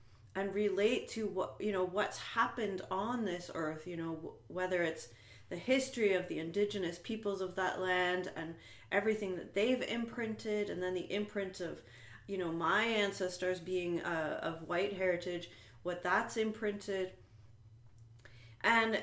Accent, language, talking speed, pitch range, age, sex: American, English, 150 wpm, 165-210 Hz, 30-49, female